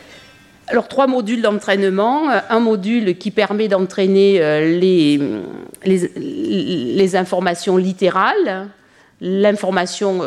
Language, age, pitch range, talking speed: French, 50-69, 170-210 Hz, 90 wpm